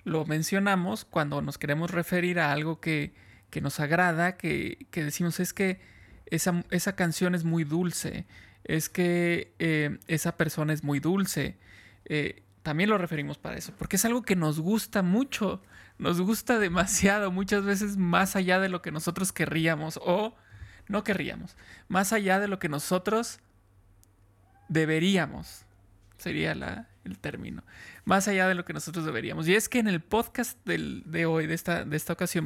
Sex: male